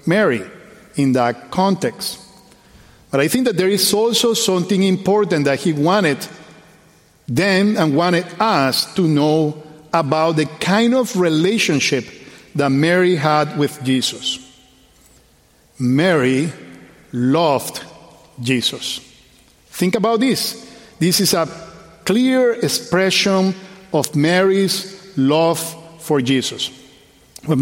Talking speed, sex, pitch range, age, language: 105 wpm, male, 145-195 Hz, 50-69, English